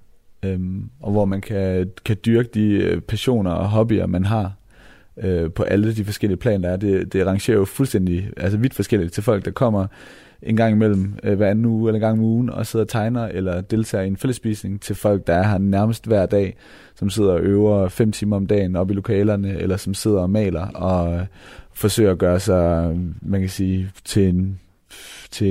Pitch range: 90-105 Hz